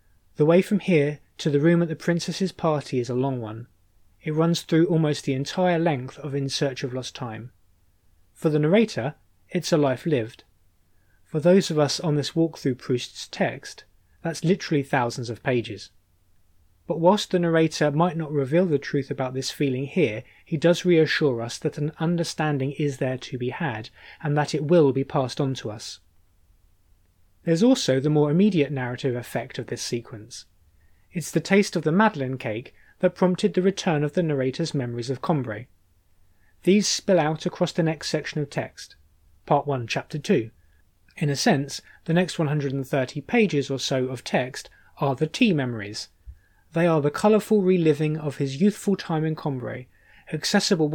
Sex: male